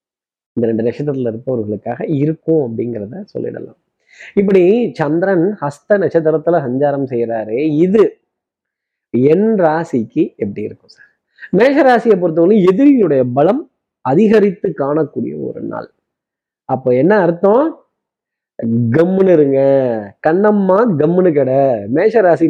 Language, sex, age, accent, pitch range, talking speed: Tamil, male, 20-39, native, 125-170 Hz, 95 wpm